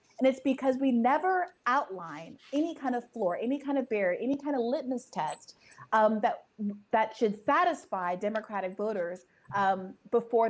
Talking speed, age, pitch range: 160 wpm, 30-49, 185-235 Hz